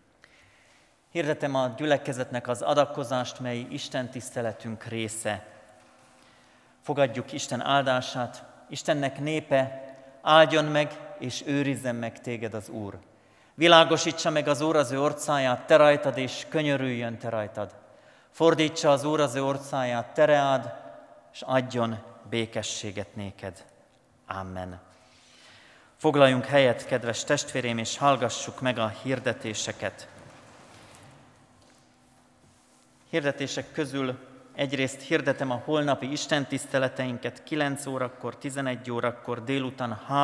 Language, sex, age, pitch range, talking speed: Hungarian, male, 40-59, 115-140 Hz, 95 wpm